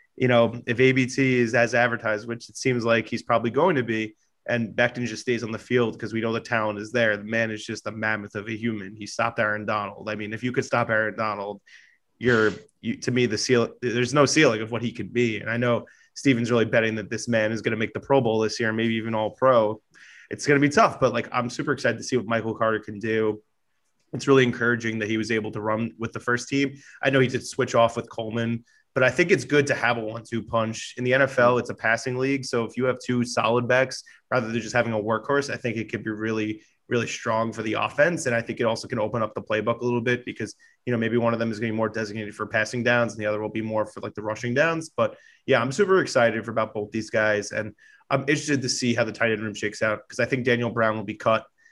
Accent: American